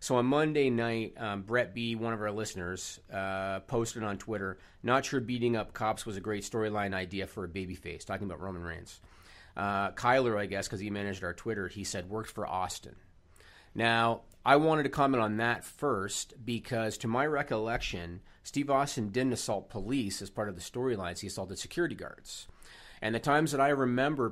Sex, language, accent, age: male, English, American, 40-59